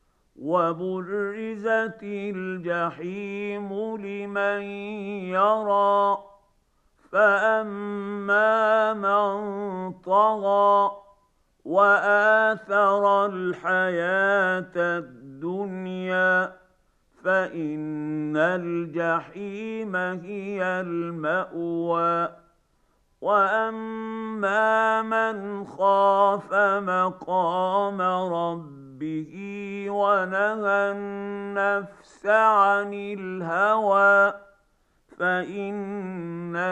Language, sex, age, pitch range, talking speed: Arabic, male, 50-69, 180-205 Hz, 40 wpm